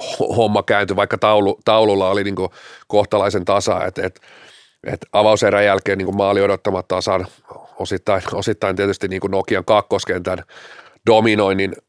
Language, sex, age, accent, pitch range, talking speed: Finnish, male, 40-59, native, 100-120 Hz, 120 wpm